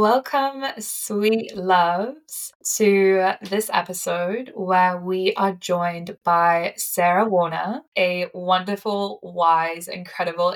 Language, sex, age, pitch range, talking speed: English, female, 20-39, 175-195 Hz, 95 wpm